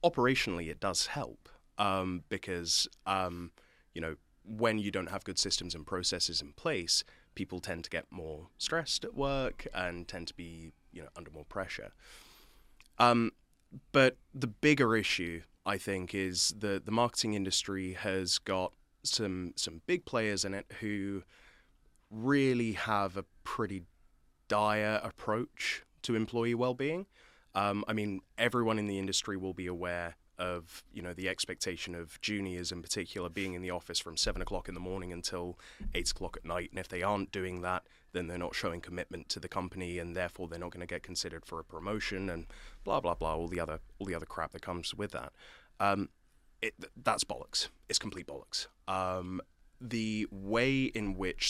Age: 20-39